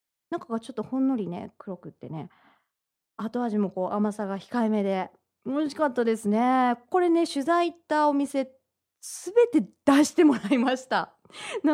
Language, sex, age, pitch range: Japanese, female, 20-39, 215-320 Hz